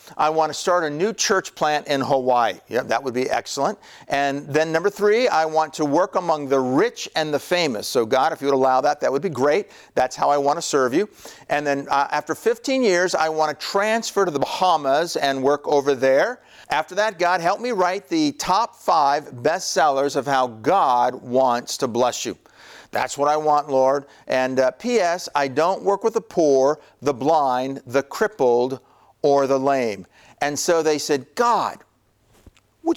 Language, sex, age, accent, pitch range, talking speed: English, male, 50-69, American, 135-190 Hz, 195 wpm